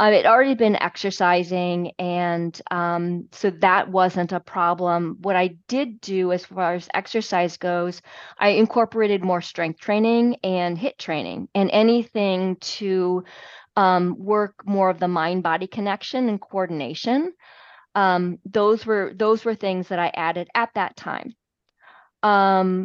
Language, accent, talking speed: English, American, 145 wpm